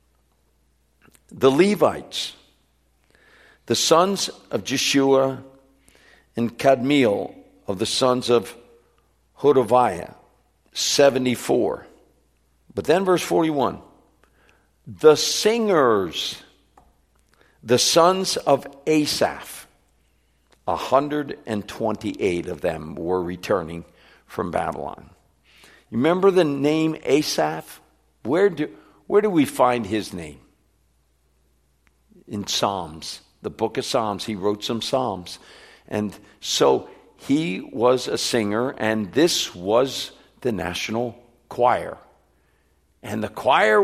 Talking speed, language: 95 wpm, English